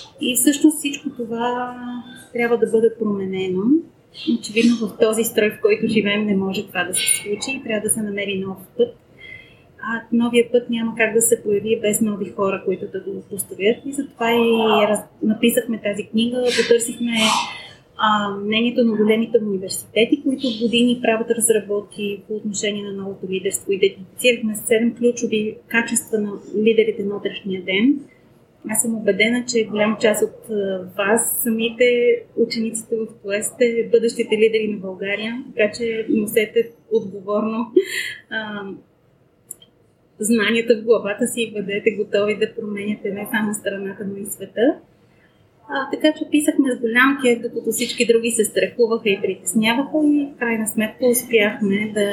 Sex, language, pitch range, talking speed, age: female, Bulgarian, 205-235 Hz, 150 wpm, 30-49